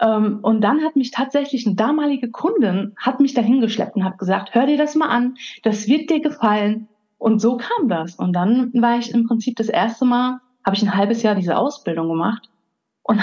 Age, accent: 30-49, German